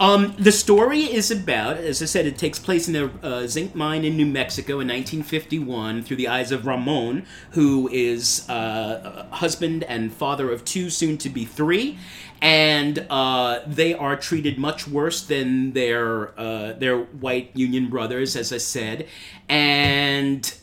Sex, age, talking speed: male, 40-59, 165 wpm